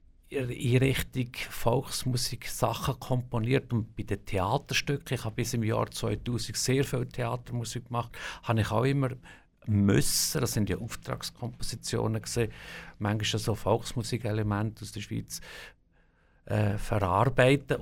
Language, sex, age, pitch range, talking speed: German, male, 50-69, 100-130 Hz, 120 wpm